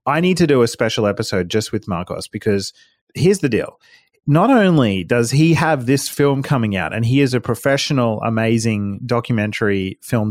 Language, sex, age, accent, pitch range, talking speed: English, male, 30-49, Australian, 105-145 Hz, 180 wpm